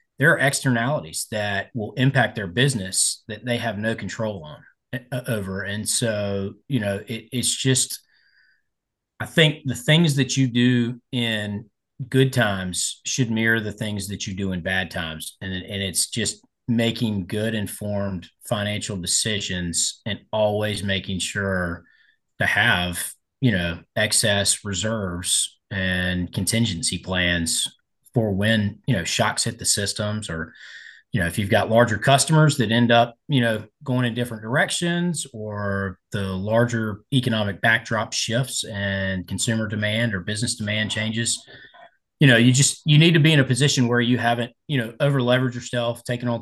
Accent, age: American, 30-49